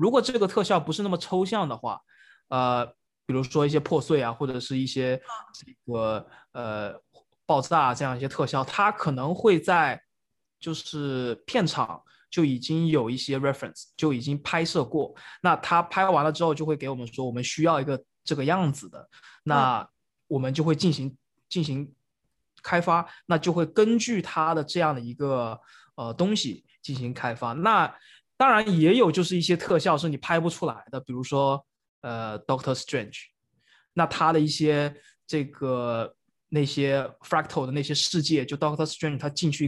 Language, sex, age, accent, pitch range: Chinese, male, 20-39, native, 130-165 Hz